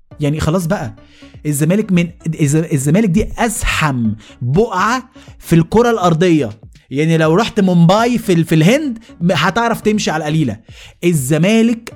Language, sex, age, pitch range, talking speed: Arabic, male, 20-39, 160-230 Hz, 125 wpm